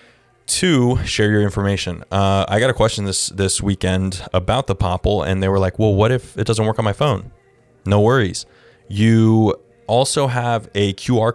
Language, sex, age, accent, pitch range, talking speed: English, male, 20-39, American, 95-115 Hz, 185 wpm